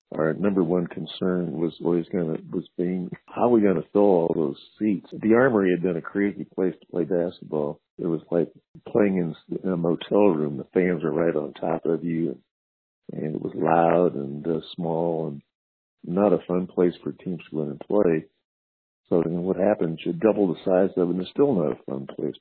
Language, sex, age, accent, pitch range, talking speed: English, male, 50-69, American, 80-95 Hz, 210 wpm